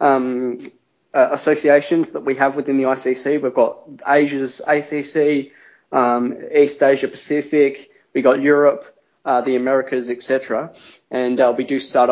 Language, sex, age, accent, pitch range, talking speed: English, male, 20-39, Australian, 125-150 Hz, 140 wpm